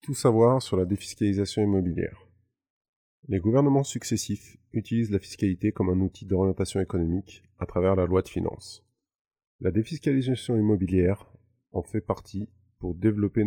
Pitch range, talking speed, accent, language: 90-110 Hz, 140 wpm, French, French